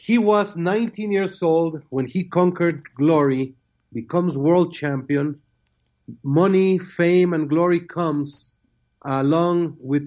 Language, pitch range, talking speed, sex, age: English, 140-185 Hz, 115 wpm, male, 40-59